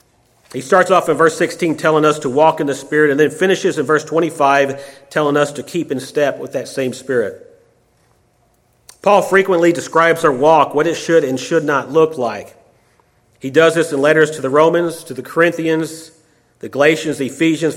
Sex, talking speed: male, 195 wpm